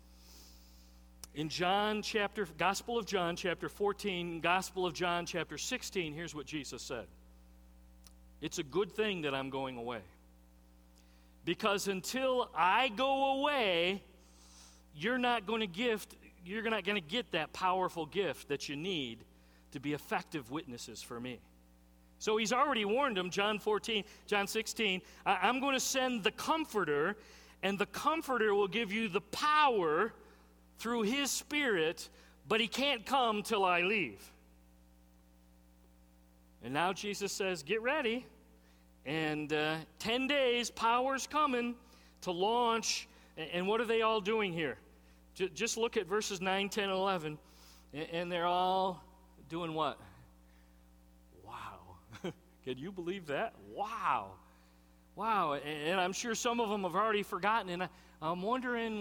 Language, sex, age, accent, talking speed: English, male, 50-69, American, 140 wpm